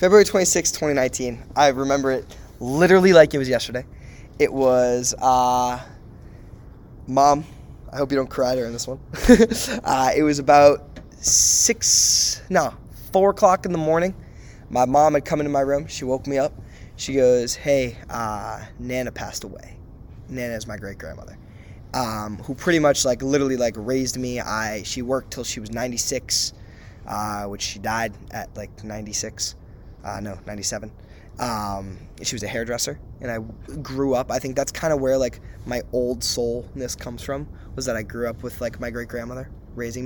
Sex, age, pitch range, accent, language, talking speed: male, 20-39, 110-135 Hz, American, English, 170 wpm